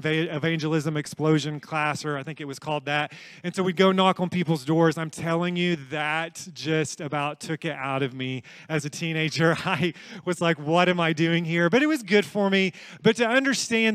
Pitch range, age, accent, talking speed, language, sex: 160-190 Hz, 30-49, American, 210 wpm, English, male